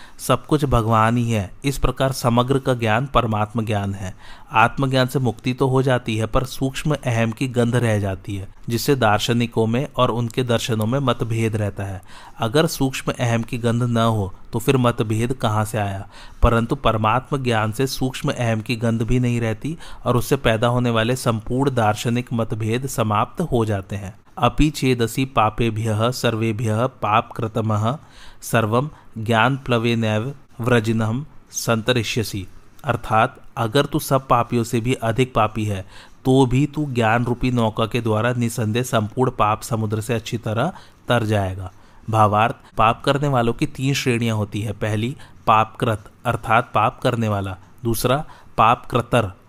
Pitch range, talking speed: 110-130 Hz, 160 wpm